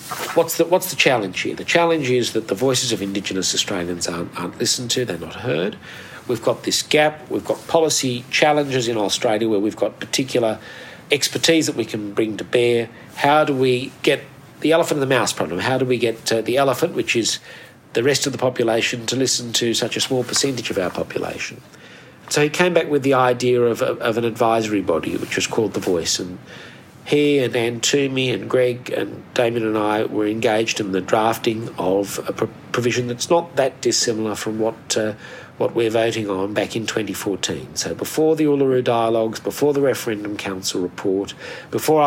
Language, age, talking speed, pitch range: English, 50-69, 200 wpm, 110-135 Hz